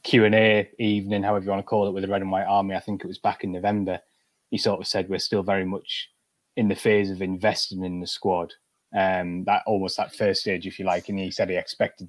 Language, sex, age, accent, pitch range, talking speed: English, male, 20-39, British, 95-105 Hz, 255 wpm